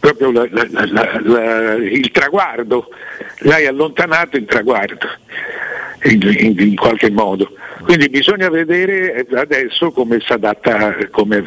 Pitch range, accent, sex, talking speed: 115-185 Hz, native, male, 95 wpm